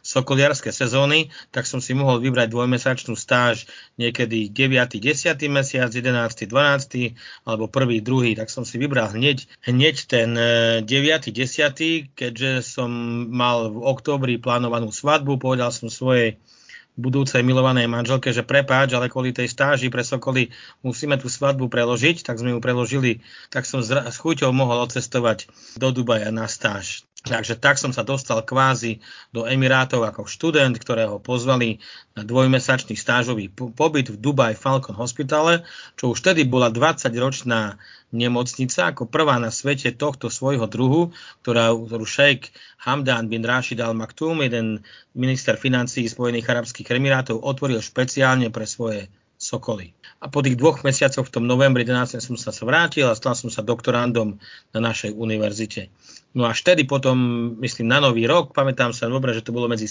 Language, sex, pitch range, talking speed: Czech, male, 115-135 Hz, 155 wpm